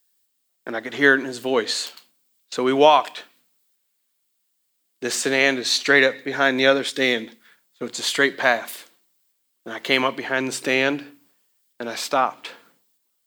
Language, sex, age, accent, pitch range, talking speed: English, male, 40-59, American, 130-185 Hz, 160 wpm